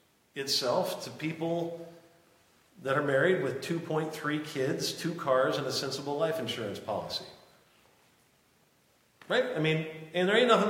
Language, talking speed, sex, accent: English, 135 wpm, male, American